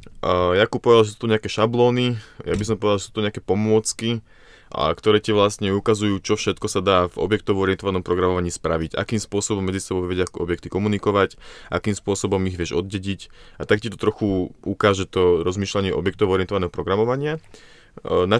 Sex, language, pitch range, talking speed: male, Slovak, 90-105 Hz, 185 wpm